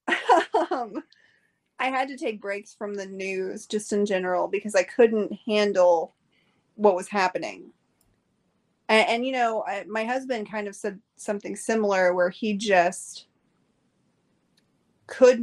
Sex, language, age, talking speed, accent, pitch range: female, English, 30-49, 130 wpm, American, 195-225 Hz